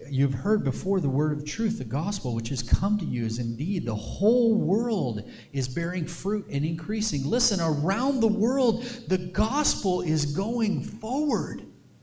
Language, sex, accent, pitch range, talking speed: English, male, American, 135-225 Hz, 165 wpm